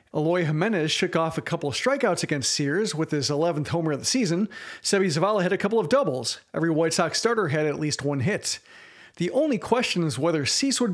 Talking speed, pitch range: 220 wpm, 155-210 Hz